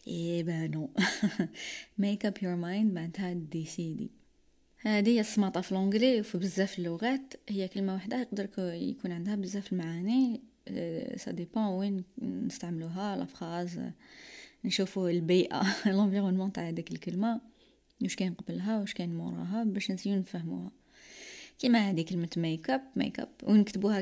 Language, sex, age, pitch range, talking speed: Arabic, female, 20-39, 175-235 Hz, 130 wpm